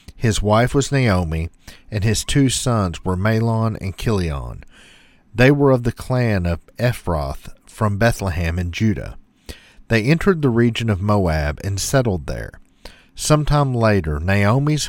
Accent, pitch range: American, 90-125 Hz